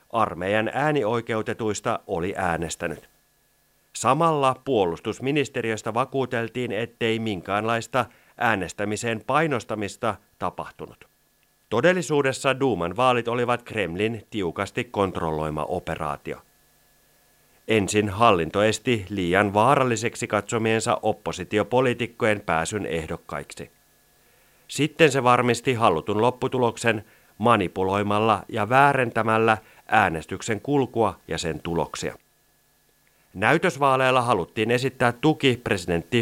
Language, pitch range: Finnish, 100-125 Hz